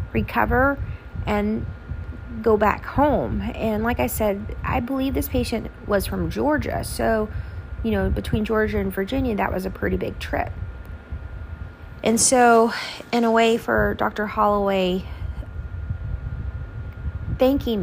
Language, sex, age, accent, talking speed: English, female, 30-49, American, 130 wpm